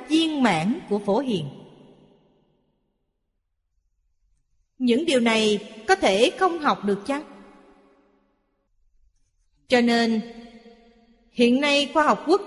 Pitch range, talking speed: 175-280 Hz, 95 wpm